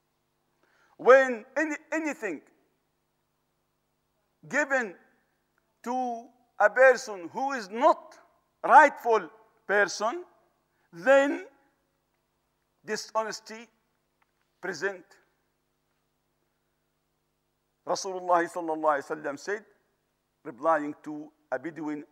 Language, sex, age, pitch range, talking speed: English, male, 50-69, 180-270 Hz, 65 wpm